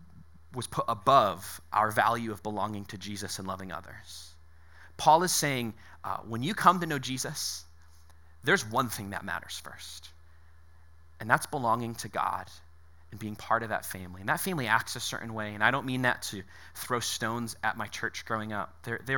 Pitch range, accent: 85-120 Hz, American